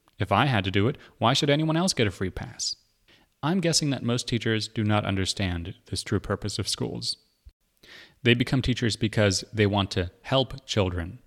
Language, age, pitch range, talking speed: English, 30-49, 95-115 Hz, 190 wpm